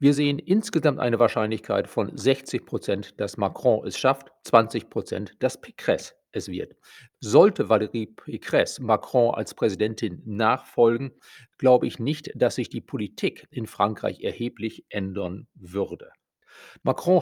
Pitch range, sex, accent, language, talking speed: 110-135 Hz, male, German, German, 130 wpm